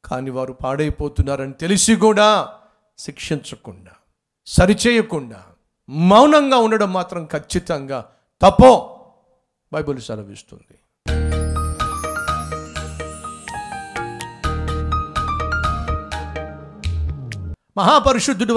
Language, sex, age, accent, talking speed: Telugu, male, 50-69, native, 50 wpm